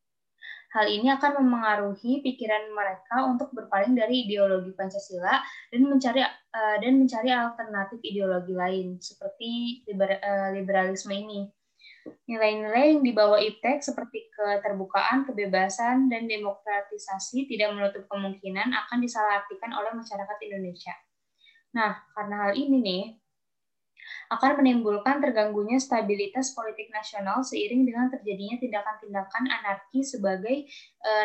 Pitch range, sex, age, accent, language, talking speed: 200-250 Hz, female, 10-29, native, Indonesian, 115 wpm